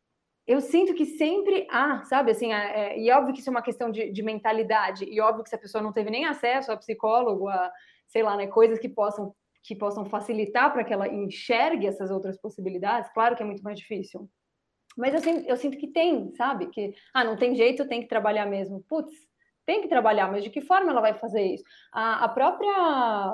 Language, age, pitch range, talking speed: Portuguese, 20-39, 210-280 Hz, 220 wpm